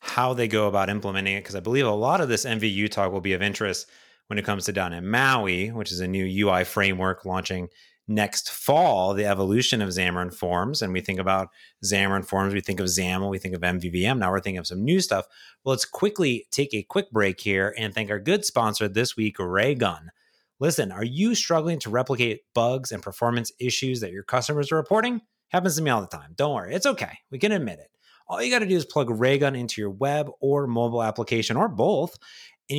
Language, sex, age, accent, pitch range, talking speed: English, male, 30-49, American, 100-140 Hz, 225 wpm